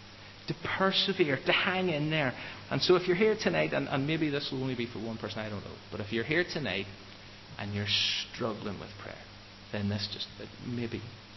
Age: 30-49